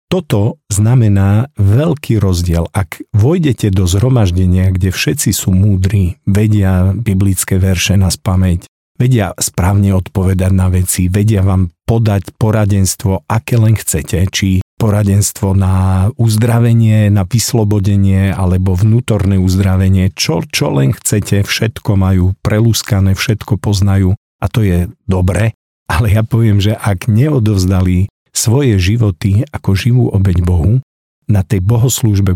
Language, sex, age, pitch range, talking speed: Czech, male, 50-69, 95-110 Hz, 120 wpm